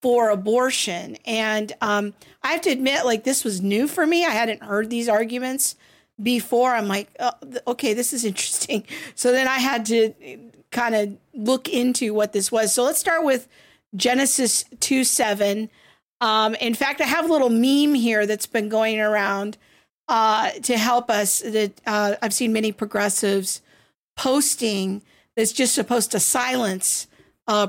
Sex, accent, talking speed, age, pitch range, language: female, American, 160 wpm, 50-69, 210-250 Hz, English